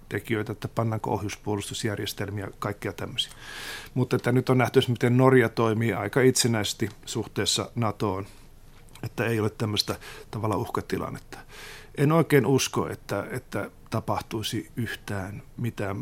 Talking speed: 120 wpm